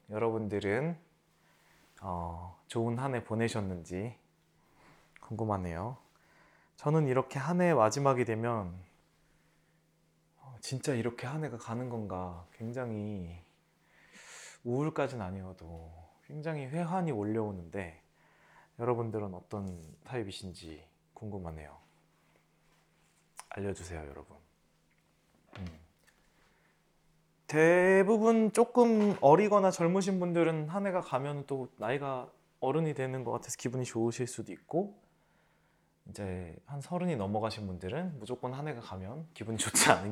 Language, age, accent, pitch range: Korean, 20-39, native, 100-150 Hz